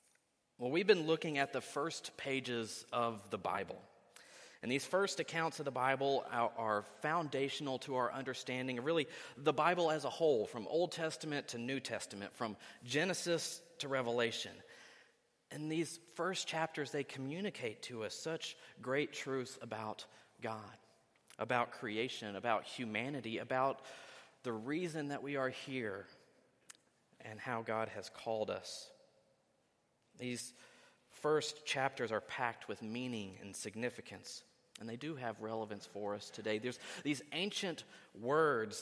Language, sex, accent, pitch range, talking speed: English, male, American, 115-150 Hz, 140 wpm